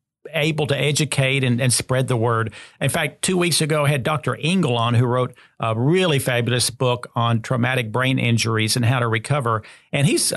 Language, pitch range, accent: English, 125-160 Hz, American